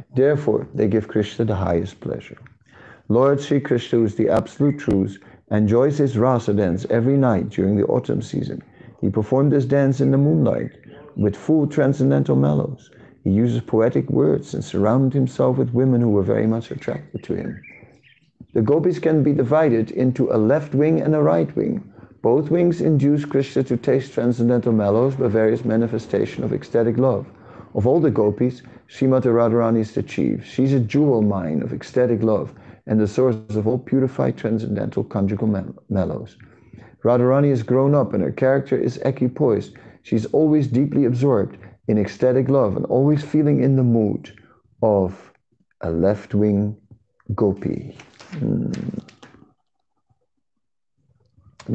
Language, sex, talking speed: English, male, 155 wpm